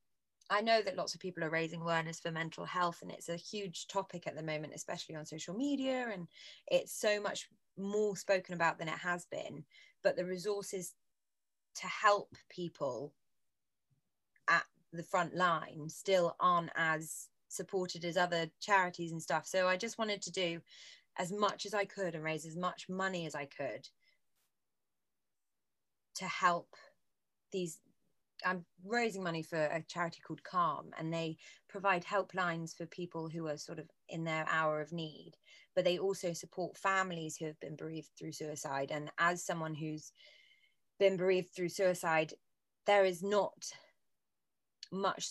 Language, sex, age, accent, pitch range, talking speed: English, female, 20-39, British, 160-195 Hz, 160 wpm